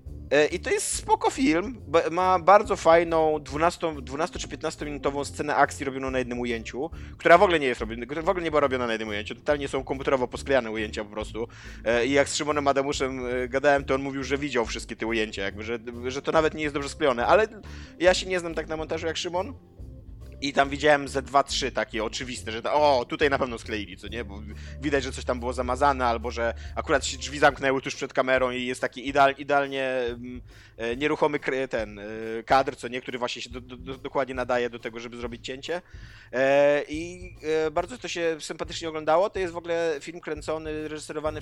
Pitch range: 115-145 Hz